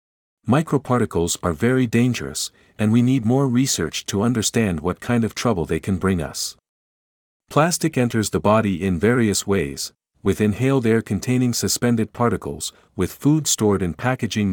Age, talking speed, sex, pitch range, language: 50-69, 155 wpm, male, 90-120 Hz, English